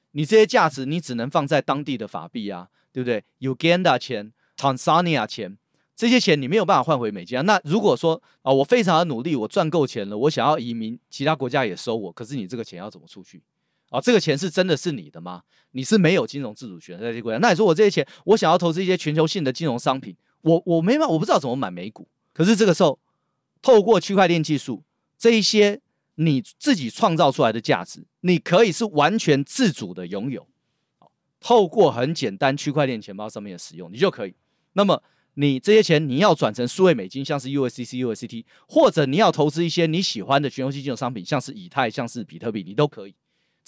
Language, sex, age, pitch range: Chinese, male, 30-49, 135-185 Hz